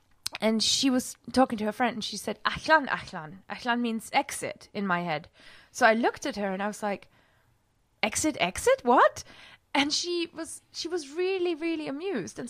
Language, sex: English, female